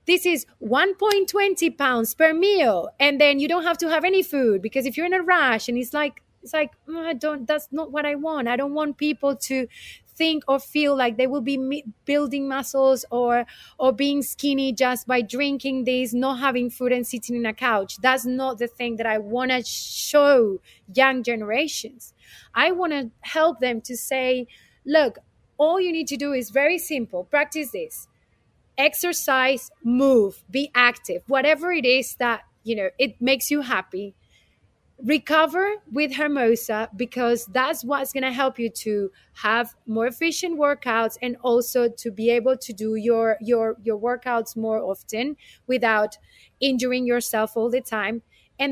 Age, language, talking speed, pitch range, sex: 30-49, French, 175 wpm, 240-300 Hz, female